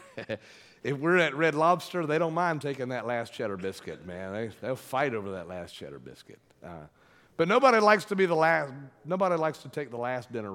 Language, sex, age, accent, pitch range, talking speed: English, male, 50-69, American, 115-160 Hz, 210 wpm